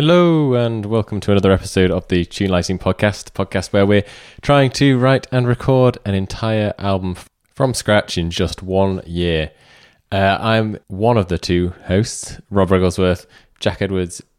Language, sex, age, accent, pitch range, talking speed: English, male, 20-39, British, 85-110 Hz, 165 wpm